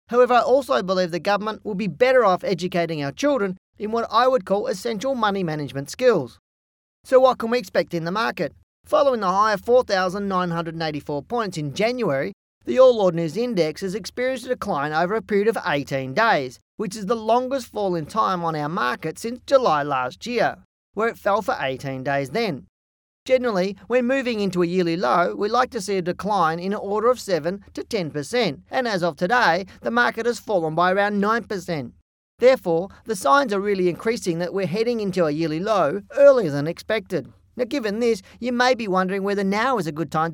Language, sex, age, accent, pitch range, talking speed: English, male, 40-59, Australian, 170-235 Hz, 200 wpm